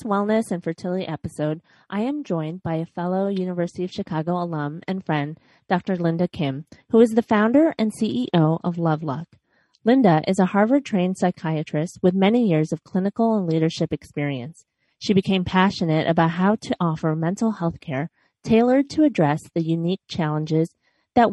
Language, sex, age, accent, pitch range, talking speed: English, female, 30-49, American, 160-210 Hz, 165 wpm